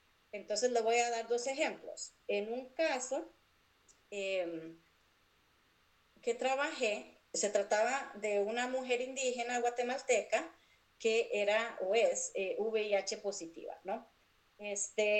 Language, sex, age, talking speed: Spanish, female, 30-49, 115 wpm